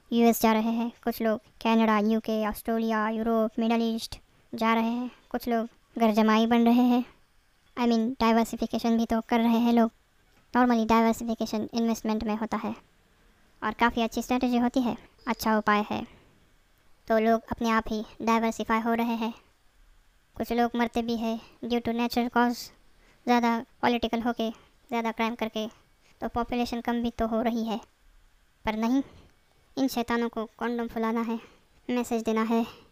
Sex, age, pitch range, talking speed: male, 20-39, 225-235 Hz, 165 wpm